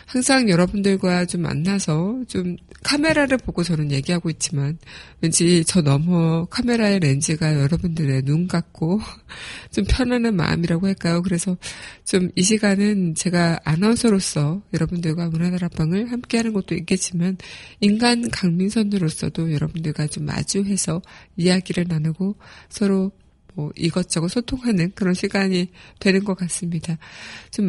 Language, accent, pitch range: Korean, native, 165-200 Hz